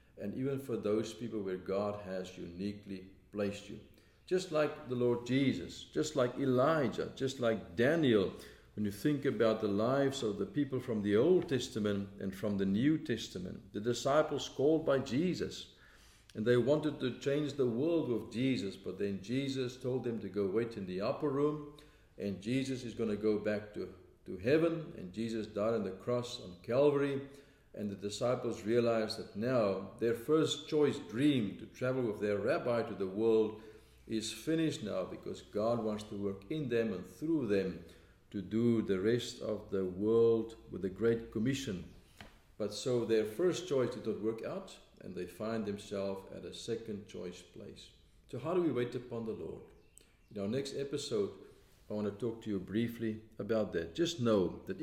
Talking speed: 185 wpm